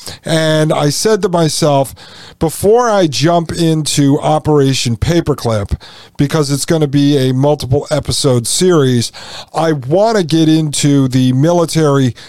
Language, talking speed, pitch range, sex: English, 130 wpm, 125-155 Hz, male